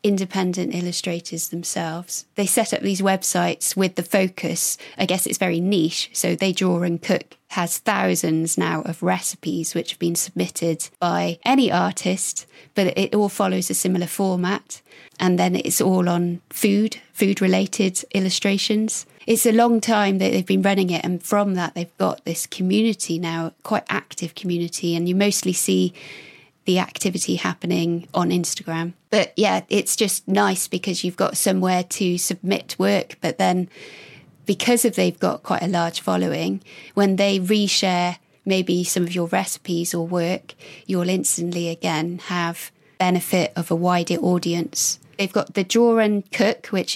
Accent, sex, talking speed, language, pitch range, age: British, female, 160 wpm, English, 170-195 Hz, 20-39